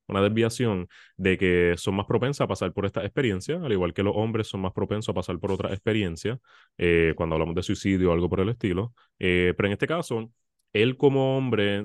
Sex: male